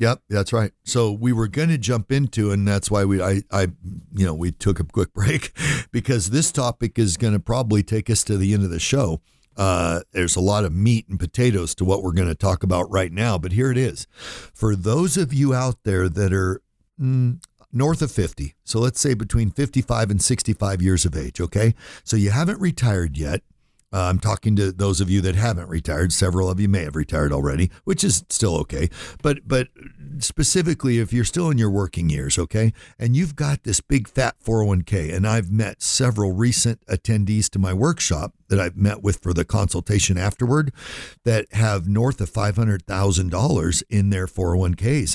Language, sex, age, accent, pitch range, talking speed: English, male, 60-79, American, 95-120 Hz, 200 wpm